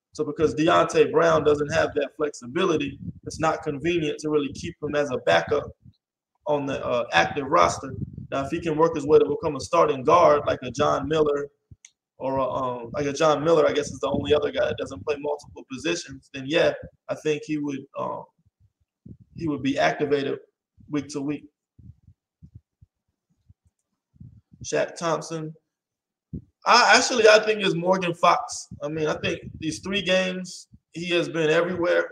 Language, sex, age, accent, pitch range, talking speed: English, male, 20-39, American, 145-170 Hz, 170 wpm